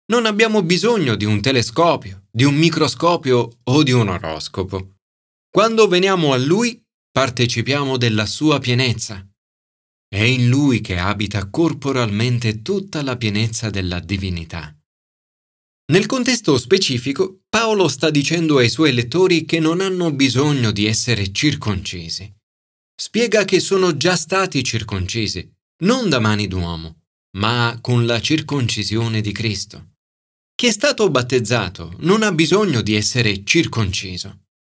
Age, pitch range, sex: 30-49, 100-170 Hz, male